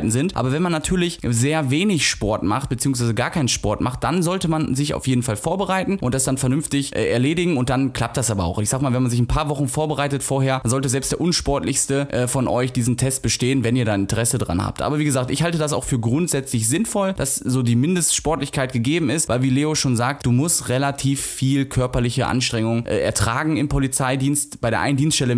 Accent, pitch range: German, 120-150 Hz